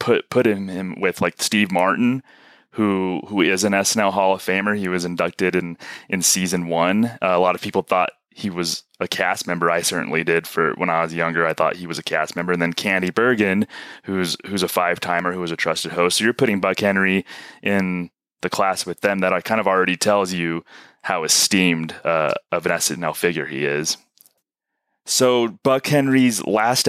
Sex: male